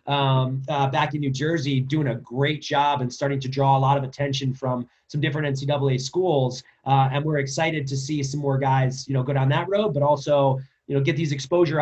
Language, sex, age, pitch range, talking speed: English, male, 30-49, 140-175 Hz, 230 wpm